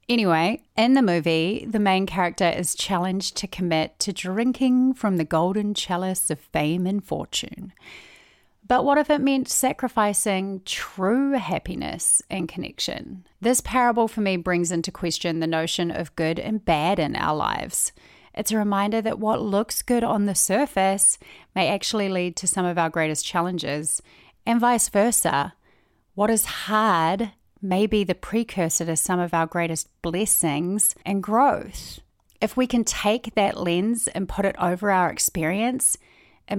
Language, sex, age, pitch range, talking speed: English, female, 30-49, 170-225 Hz, 155 wpm